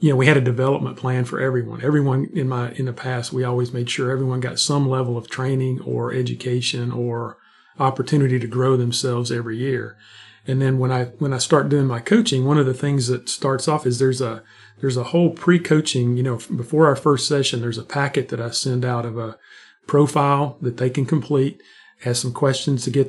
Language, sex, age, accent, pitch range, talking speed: English, male, 40-59, American, 125-145 Hz, 215 wpm